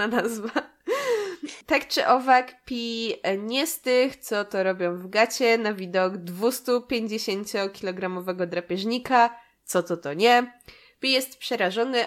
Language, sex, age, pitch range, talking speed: Polish, female, 20-39, 200-260 Hz, 125 wpm